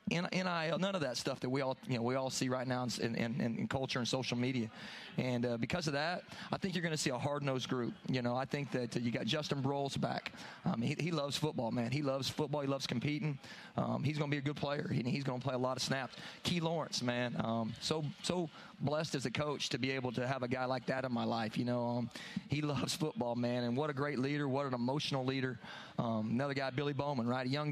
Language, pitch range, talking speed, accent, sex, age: English, 125-145 Hz, 265 wpm, American, male, 30-49